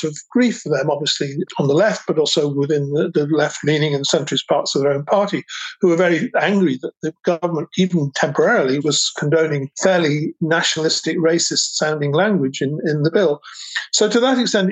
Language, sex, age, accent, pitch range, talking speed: English, male, 50-69, British, 155-185 Hz, 180 wpm